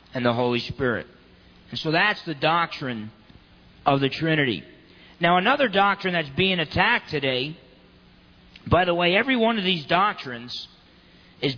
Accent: American